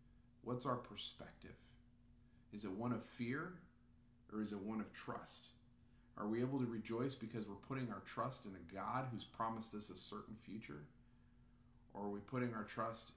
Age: 40-59